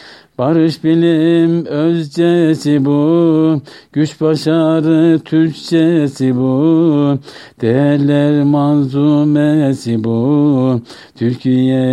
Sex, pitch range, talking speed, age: male, 130-160 Hz, 60 wpm, 60-79